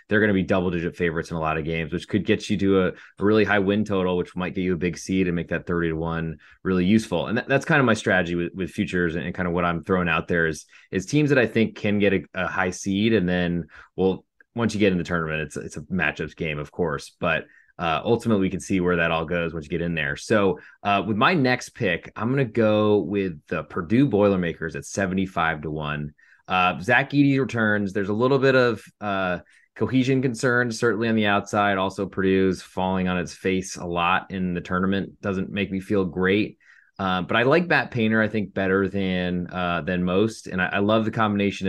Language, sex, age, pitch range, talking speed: English, male, 20-39, 90-105 Hz, 240 wpm